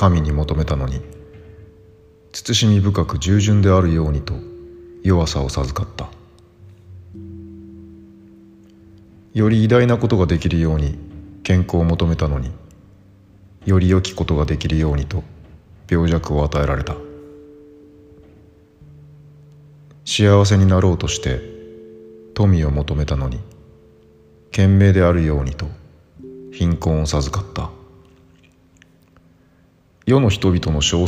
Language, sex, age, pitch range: Japanese, male, 40-59, 75-100 Hz